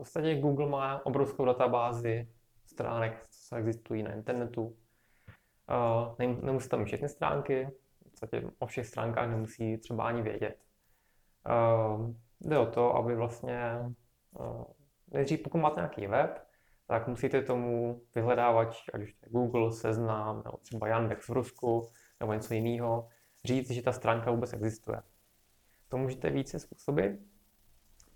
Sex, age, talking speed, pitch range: male, 20-39, 135 wpm, 110-125 Hz